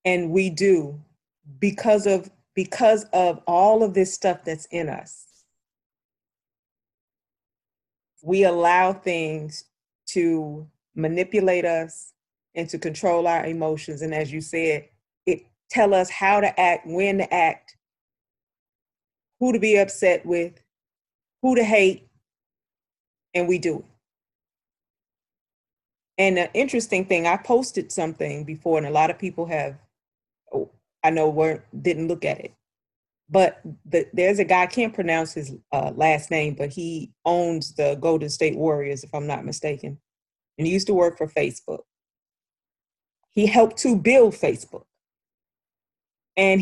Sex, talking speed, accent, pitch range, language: female, 140 wpm, American, 155-195 Hz, English